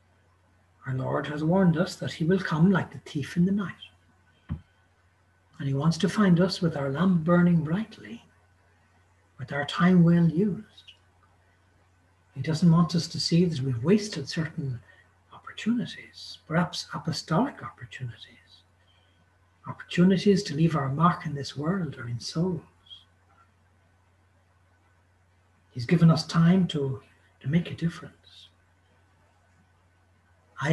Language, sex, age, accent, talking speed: English, male, 60-79, Irish, 130 wpm